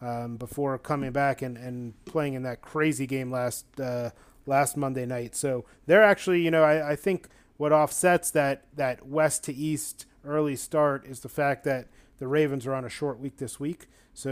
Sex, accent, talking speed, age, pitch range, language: male, American, 195 wpm, 30-49, 125-140 Hz, English